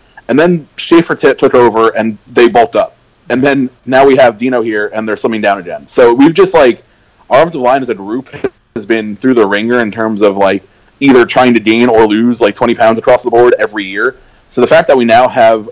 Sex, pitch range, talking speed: male, 100-120 Hz, 235 wpm